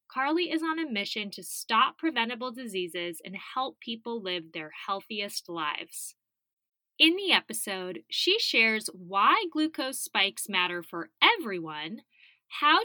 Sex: female